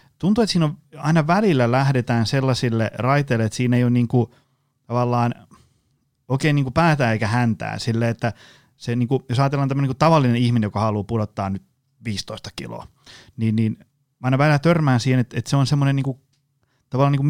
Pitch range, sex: 120-140 Hz, male